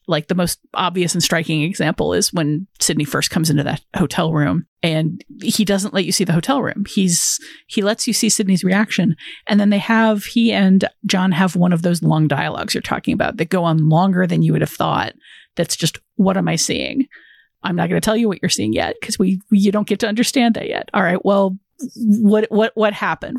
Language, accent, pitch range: English, American, 175-215 Hz